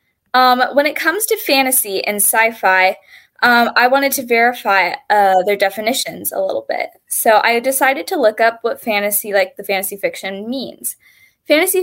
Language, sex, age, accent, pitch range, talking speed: English, female, 20-39, American, 195-255 Hz, 165 wpm